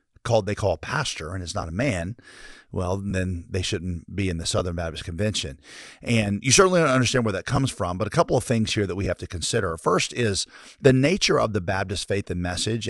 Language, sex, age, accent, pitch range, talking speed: English, male, 40-59, American, 95-120 Hz, 235 wpm